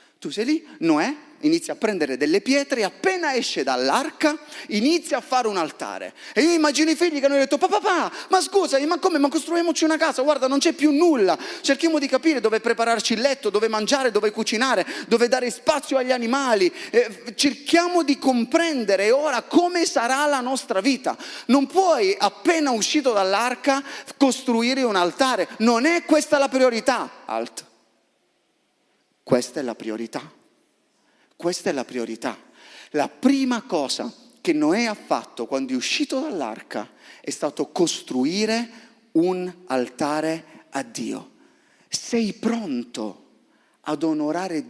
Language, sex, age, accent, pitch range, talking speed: Italian, male, 30-49, native, 190-305 Hz, 145 wpm